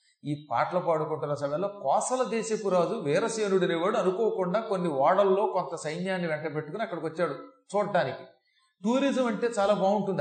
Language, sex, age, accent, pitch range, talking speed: Telugu, male, 40-59, native, 155-205 Hz, 130 wpm